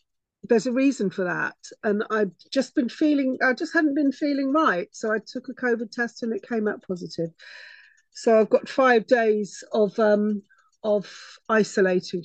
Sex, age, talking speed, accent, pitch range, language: female, 50-69, 175 wpm, British, 185-230 Hz, English